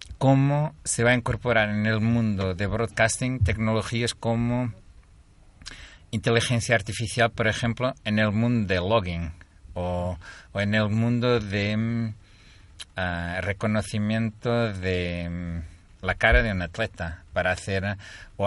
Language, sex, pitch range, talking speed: Spanish, male, 95-120 Hz, 125 wpm